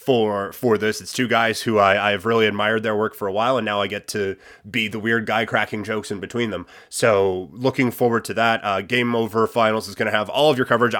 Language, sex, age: English, male, 30-49